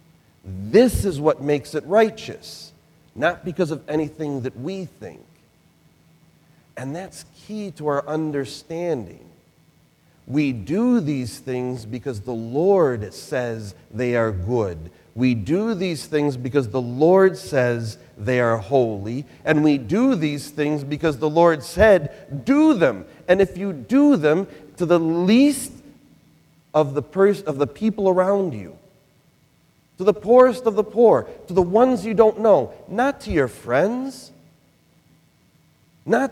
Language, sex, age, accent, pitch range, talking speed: English, male, 40-59, American, 135-195 Hz, 135 wpm